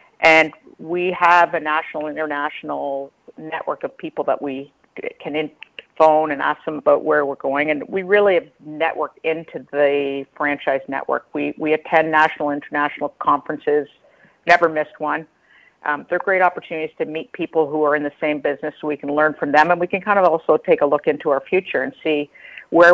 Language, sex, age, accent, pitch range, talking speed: English, female, 50-69, American, 145-165 Hz, 190 wpm